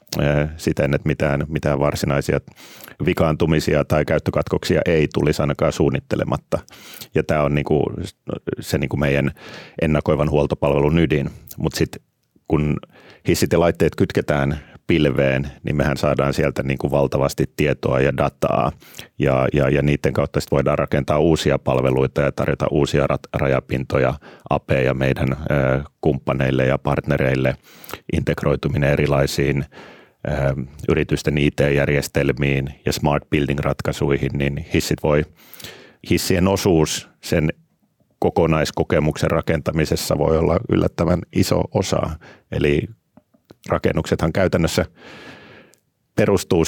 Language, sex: Finnish, male